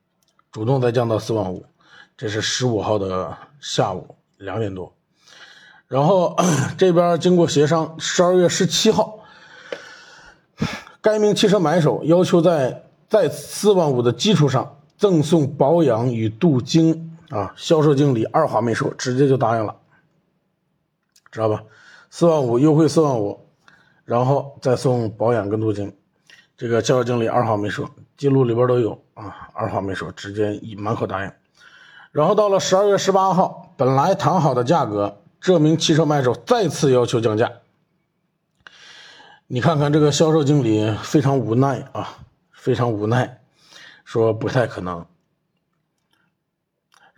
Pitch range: 120-170 Hz